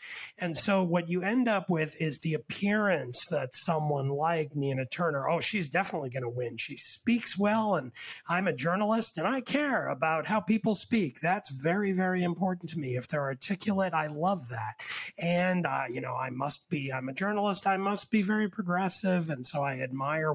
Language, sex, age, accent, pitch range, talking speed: English, male, 30-49, American, 145-190 Hz, 195 wpm